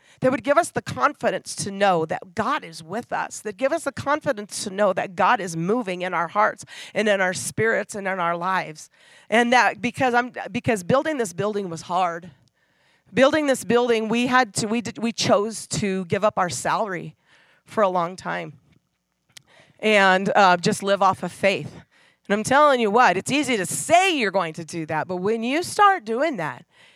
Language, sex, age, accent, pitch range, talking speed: English, female, 40-59, American, 170-225 Hz, 200 wpm